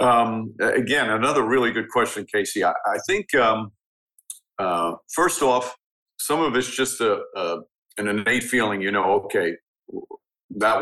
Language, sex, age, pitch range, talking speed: English, male, 50-69, 105-130 Hz, 150 wpm